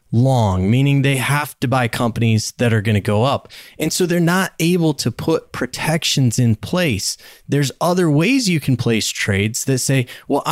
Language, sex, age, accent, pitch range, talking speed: English, male, 20-39, American, 120-165 Hz, 190 wpm